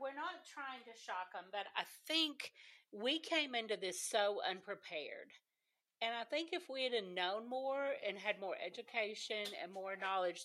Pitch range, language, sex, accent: 190-275 Hz, English, female, American